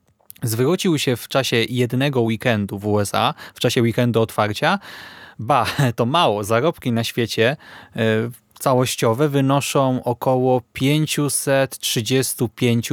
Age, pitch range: 20-39, 110-140 Hz